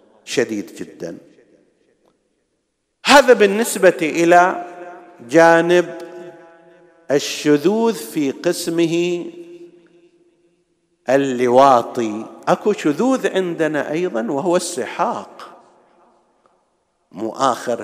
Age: 50-69